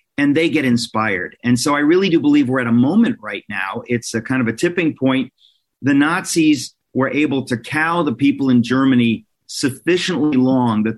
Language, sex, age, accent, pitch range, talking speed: English, male, 50-69, American, 115-140 Hz, 195 wpm